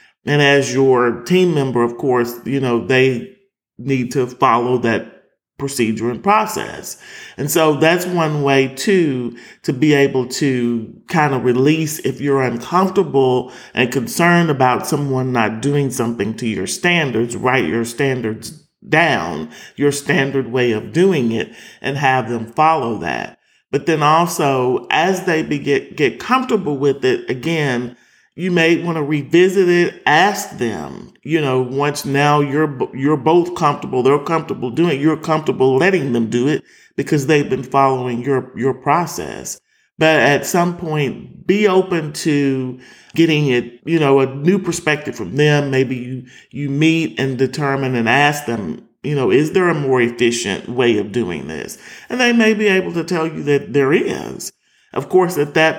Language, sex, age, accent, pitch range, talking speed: English, male, 40-59, American, 130-165 Hz, 165 wpm